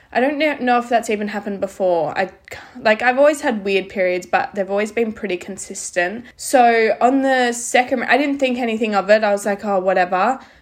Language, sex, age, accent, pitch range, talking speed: English, female, 20-39, Australian, 190-230 Hz, 205 wpm